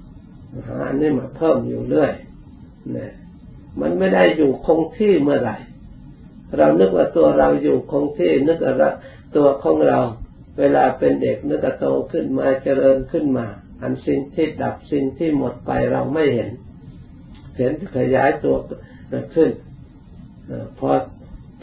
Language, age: Thai, 50-69